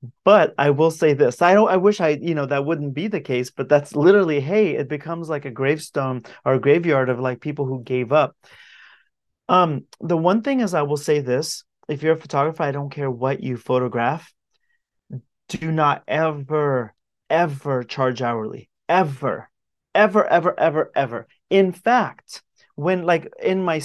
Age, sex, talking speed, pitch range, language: 30-49, male, 180 wpm, 130-175 Hz, English